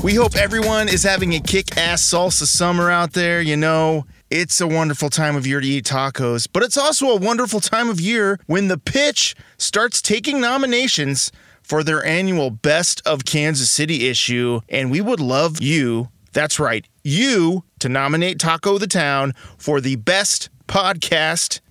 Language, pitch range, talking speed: English, 145-200 Hz, 170 wpm